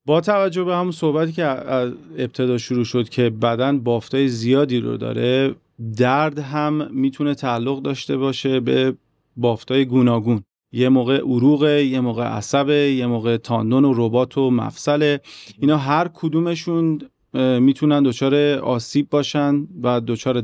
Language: Persian